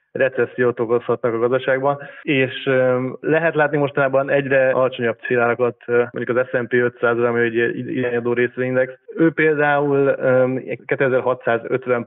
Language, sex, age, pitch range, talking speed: Hungarian, male, 20-39, 120-130 Hz, 120 wpm